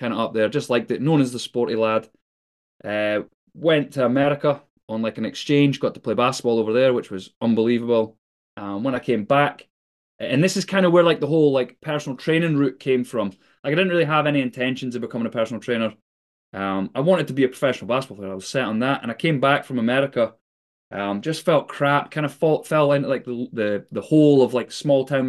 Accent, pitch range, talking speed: British, 120-155 Hz, 235 wpm